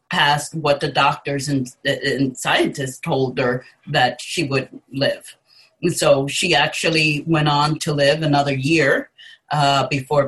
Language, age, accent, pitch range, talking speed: English, 40-59, American, 140-155 Hz, 145 wpm